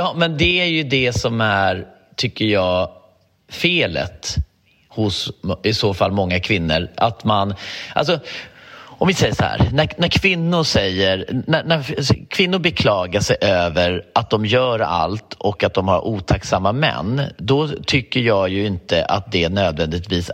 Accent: native